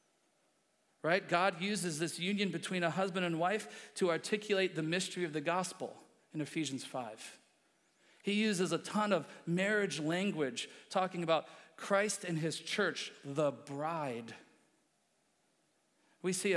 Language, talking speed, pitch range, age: English, 130 wpm, 170-210 Hz, 50-69